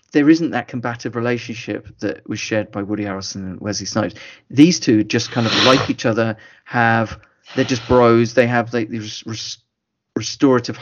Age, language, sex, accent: 30-49, English, male, British